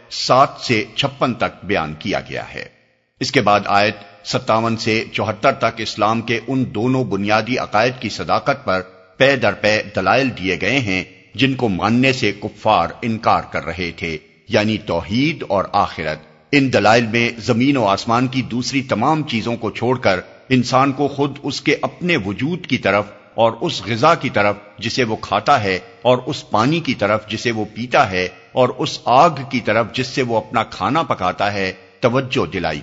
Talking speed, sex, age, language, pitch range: 175 wpm, male, 50-69, Urdu, 100-130 Hz